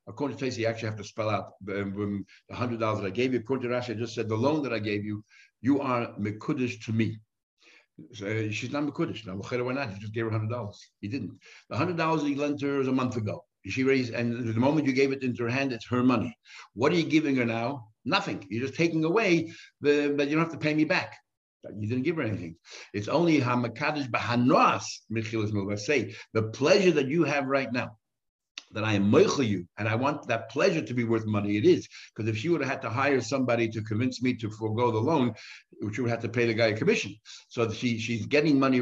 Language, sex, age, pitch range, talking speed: English, male, 60-79, 110-140 Hz, 240 wpm